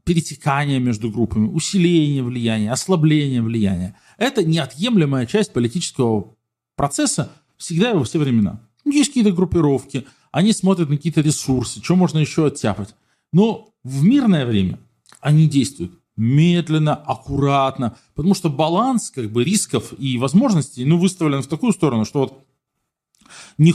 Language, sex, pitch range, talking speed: Russian, male, 125-170 Hz, 135 wpm